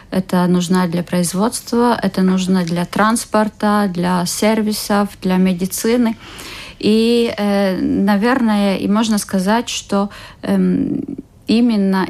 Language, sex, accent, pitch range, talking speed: Russian, female, native, 185-210 Hz, 95 wpm